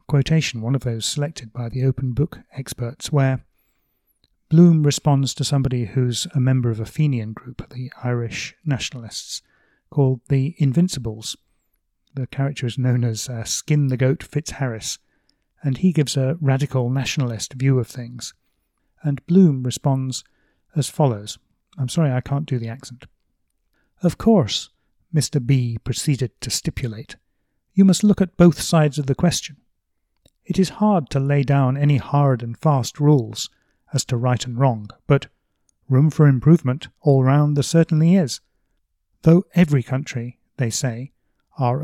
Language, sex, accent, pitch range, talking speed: English, male, British, 125-155 Hz, 150 wpm